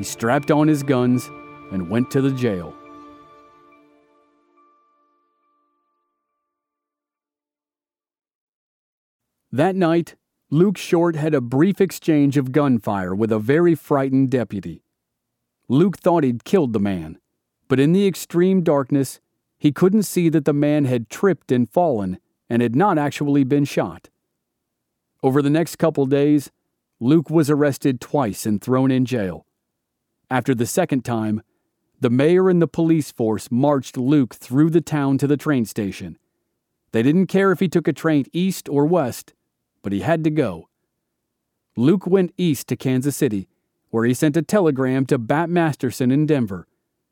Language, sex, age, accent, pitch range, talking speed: English, male, 40-59, American, 120-165 Hz, 150 wpm